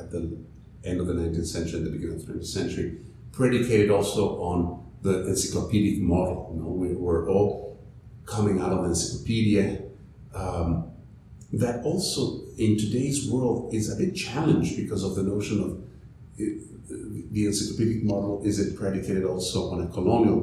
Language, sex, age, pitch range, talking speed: English, male, 50-69, 90-115 Hz, 160 wpm